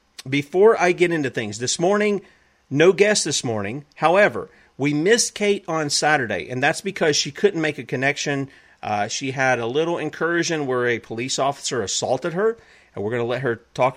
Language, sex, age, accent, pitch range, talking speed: English, male, 40-59, American, 115-150 Hz, 190 wpm